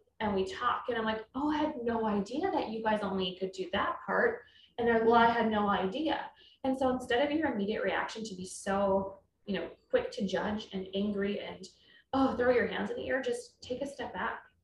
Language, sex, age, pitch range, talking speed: English, female, 20-39, 195-250 Hz, 235 wpm